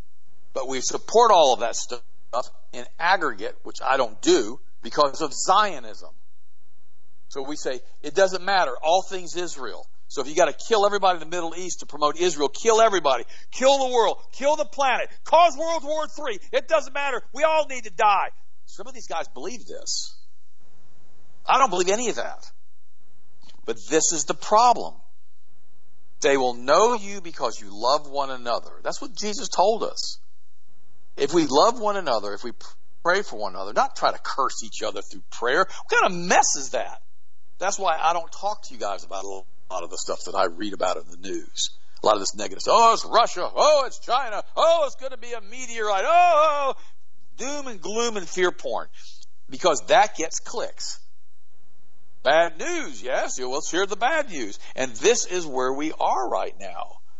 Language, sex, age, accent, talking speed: English, male, 50-69, American, 190 wpm